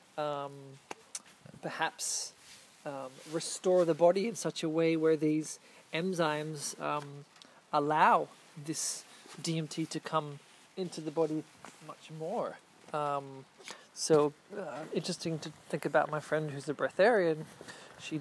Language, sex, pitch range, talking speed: English, male, 150-175 Hz, 120 wpm